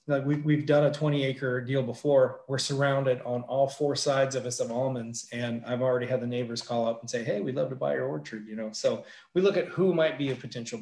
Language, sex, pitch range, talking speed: English, male, 120-140 Hz, 260 wpm